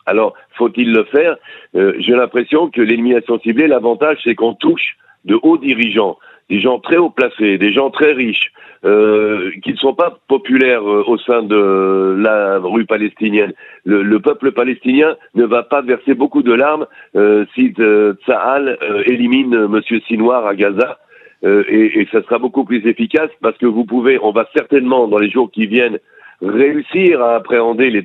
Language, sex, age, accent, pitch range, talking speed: French, male, 50-69, French, 110-140 Hz, 180 wpm